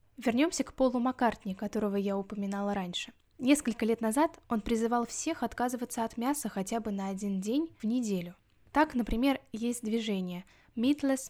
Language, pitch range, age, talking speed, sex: Russian, 200-245 Hz, 10-29, 155 wpm, female